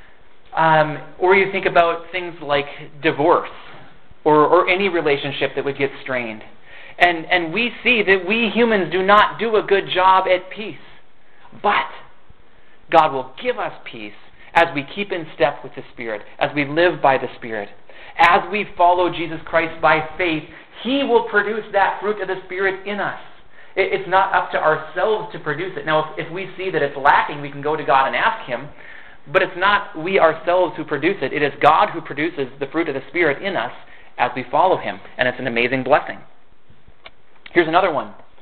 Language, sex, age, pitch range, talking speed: English, male, 30-49, 145-190 Hz, 195 wpm